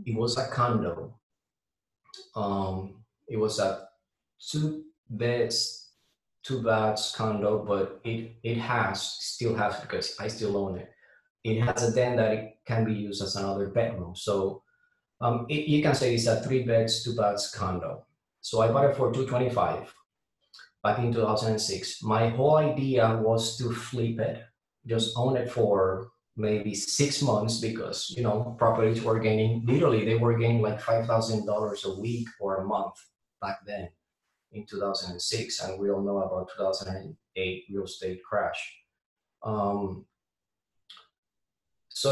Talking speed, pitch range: 160 wpm, 100-120 Hz